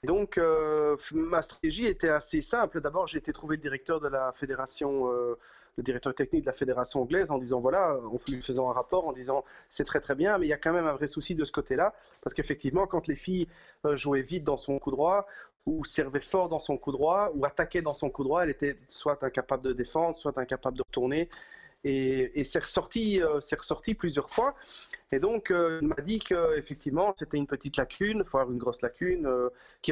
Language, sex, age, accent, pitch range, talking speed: French, male, 30-49, French, 135-180 Hz, 220 wpm